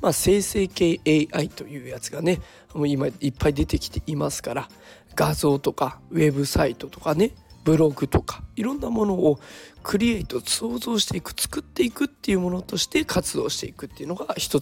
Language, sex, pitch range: Japanese, male, 150-200 Hz